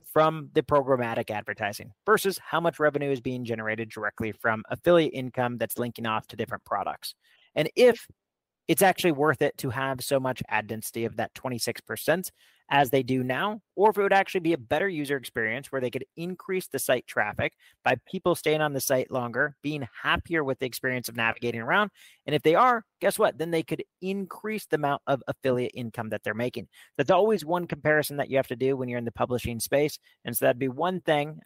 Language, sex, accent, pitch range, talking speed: English, male, American, 120-155 Hz, 210 wpm